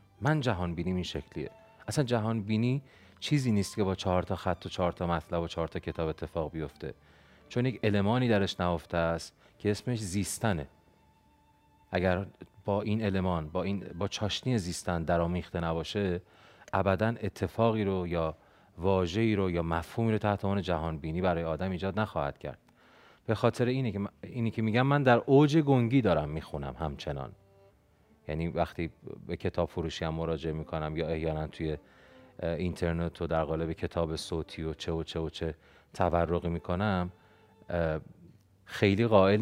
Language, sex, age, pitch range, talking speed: Persian, male, 30-49, 85-105 Hz, 160 wpm